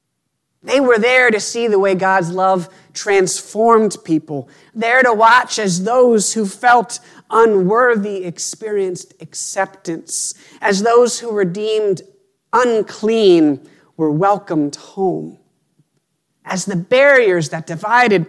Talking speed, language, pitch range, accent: 115 wpm, English, 160-215 Hz, American